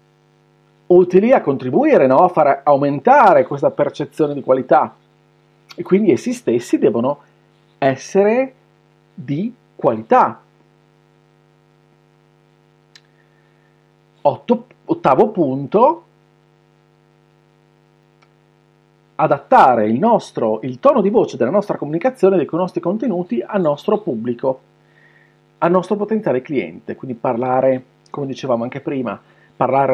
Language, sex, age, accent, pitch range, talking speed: Italian, male, 40-59, native, 140-195 Hz, 100 wpm